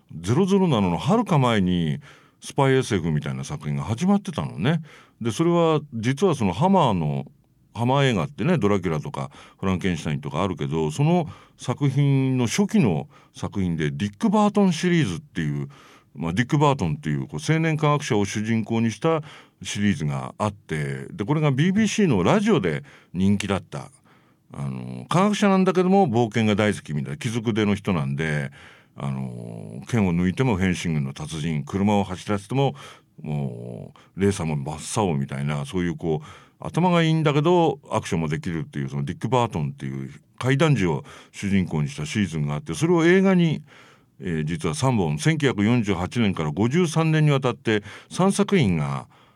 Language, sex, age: English, male, 50-69